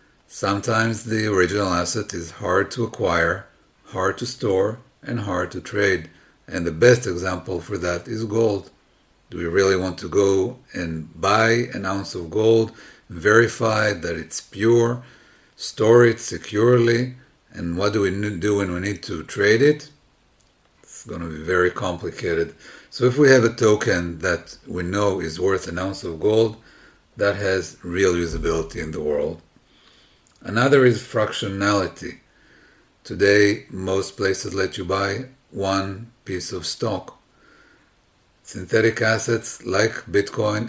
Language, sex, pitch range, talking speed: English, male, 95-115 Hz, 145 wpm